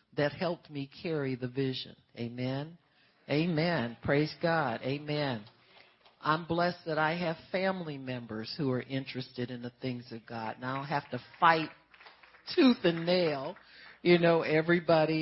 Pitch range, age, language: 135-170 Hz, 50-69, English